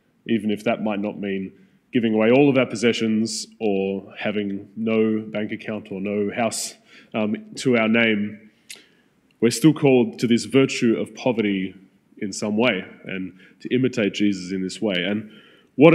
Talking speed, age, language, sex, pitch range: 165 wpm, 20-39, English, male, 105-130 Hz